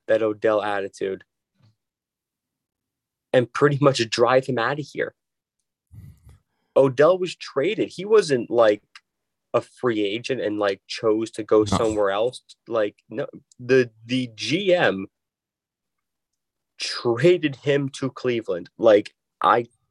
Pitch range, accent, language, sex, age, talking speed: 115-145 Hz, American, English, male, 20-39, 110 wpm